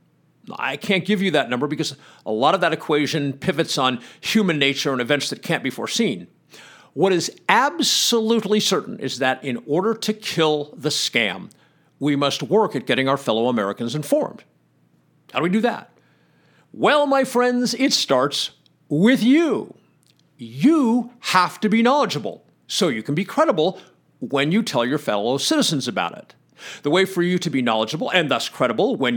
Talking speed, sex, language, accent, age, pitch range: 175 wpm, male, English, American, 50-69, 140-215 Hz